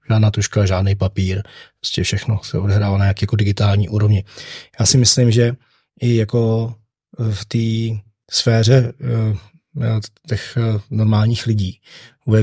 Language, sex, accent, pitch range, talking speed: Czech, male, native, 110-120 Hz, 125 wpm